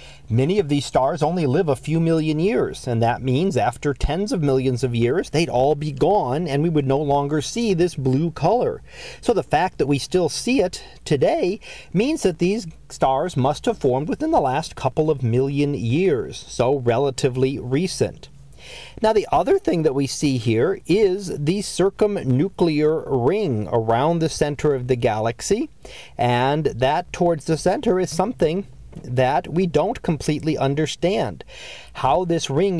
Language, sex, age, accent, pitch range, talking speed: English, male, 40-59, American, 130-170 Hz, 165 wpm